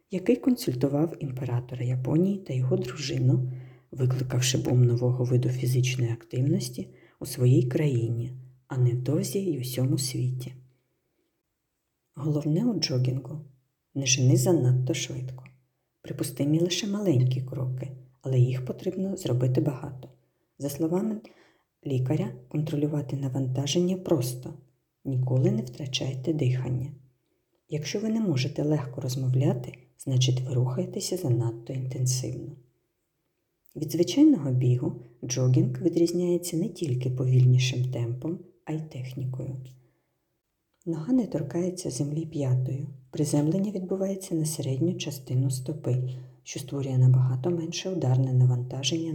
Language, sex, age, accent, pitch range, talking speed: Ukrainian, female, 40-59, native, 130-160 Hz, 110 wpm